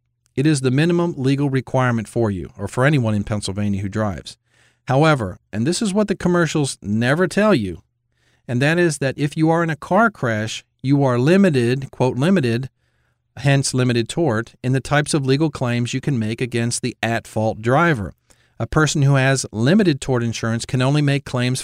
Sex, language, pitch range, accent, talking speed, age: male, English, 115-140 Hz, American, 190 wpm, 50-69